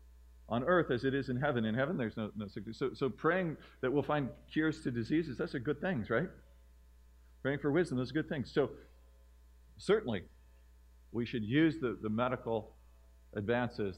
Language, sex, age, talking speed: English, male, 50-69, 185 wpm